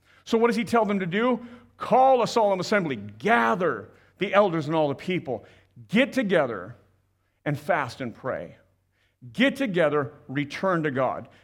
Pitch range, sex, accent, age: 105-175 Hz, male, American, 50-69